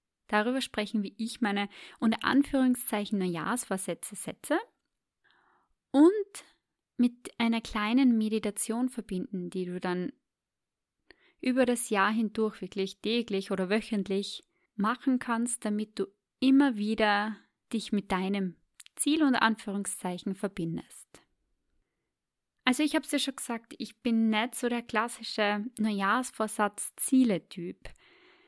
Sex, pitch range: female, 205-260 Hz